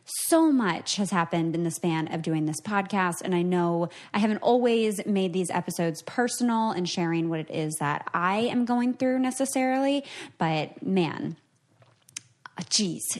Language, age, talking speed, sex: English, 20-39, 160 wpm, female